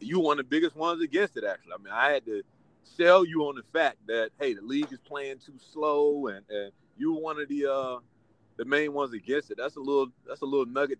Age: 30-49